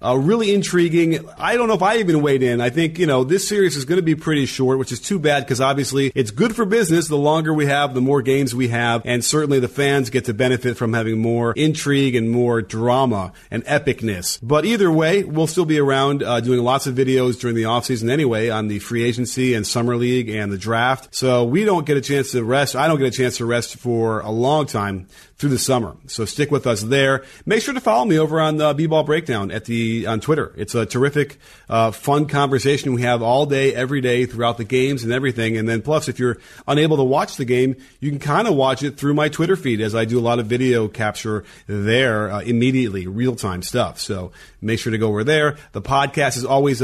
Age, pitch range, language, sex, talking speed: 40-59, 115-140 Hz, English, male, 240 wpm